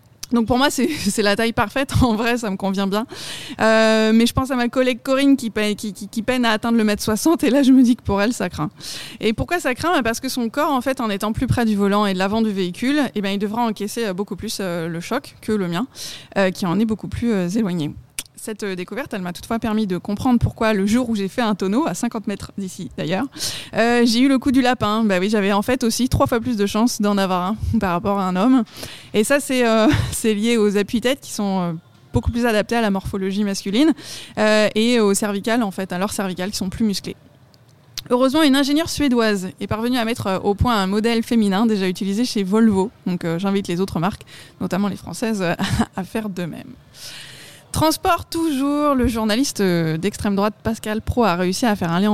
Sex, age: female, 20-39